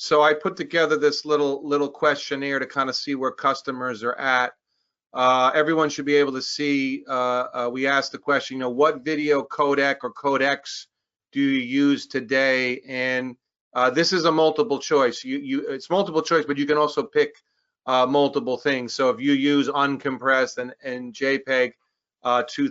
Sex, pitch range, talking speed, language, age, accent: male, 125-145 Hz, 185 wpm, English, 40-59, American